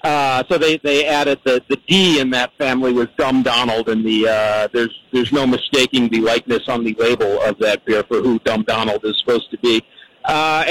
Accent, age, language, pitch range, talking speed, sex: American, 50-69, English, 125-180 Hz, 215 wpm, male